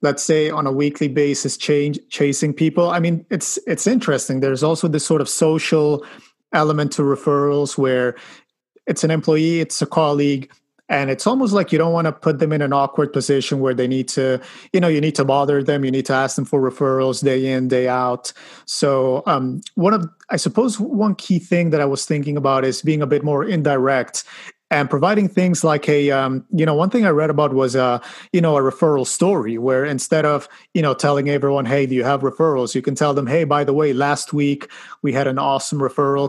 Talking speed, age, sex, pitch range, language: 220 wpm, 30-49, male, 135-155 Hz, English